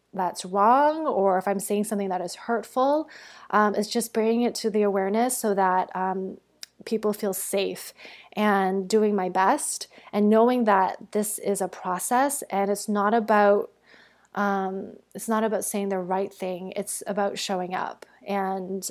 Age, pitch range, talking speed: 20-39, 195-225 Hz, 165 wpm